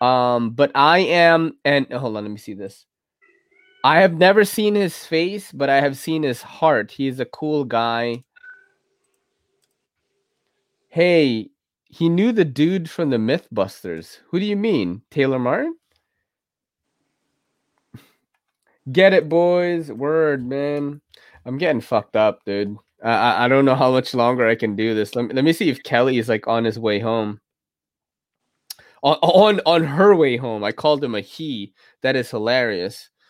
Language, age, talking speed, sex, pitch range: English, 20-39, 165 wpm, male, 115-175 Hz